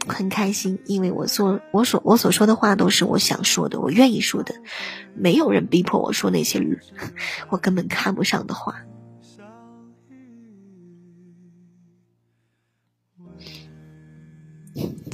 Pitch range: 180-240 Hz